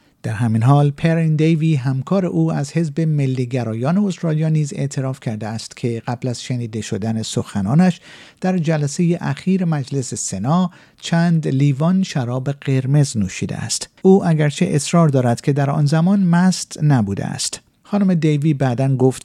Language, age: Persian, 50-69